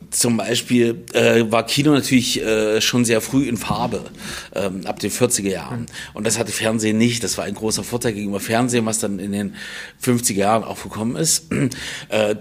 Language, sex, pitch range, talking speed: German, male, 100-120 Hz, 190 wpm